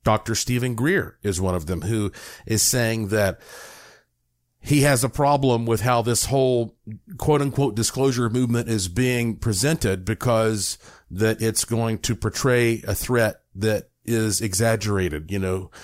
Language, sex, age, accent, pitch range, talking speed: English, male, 50-69, American, 105-140 Hz, 150 wpm